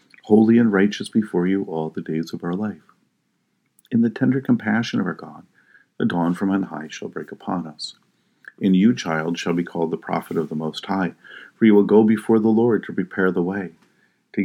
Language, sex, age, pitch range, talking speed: English, male, 50-69, 85-105 Hz, 210 wpm